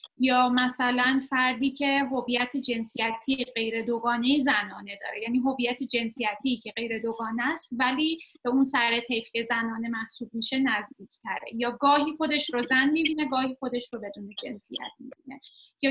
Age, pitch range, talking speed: 10-29, 230-275 Hz, 145 wpm